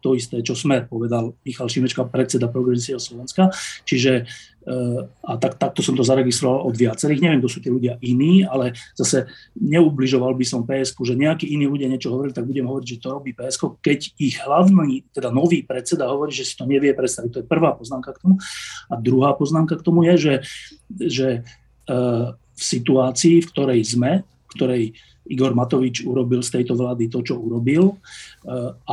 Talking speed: 185 wpm